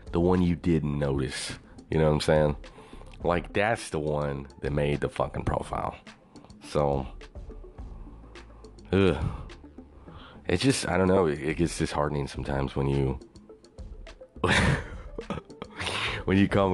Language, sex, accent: English, male, American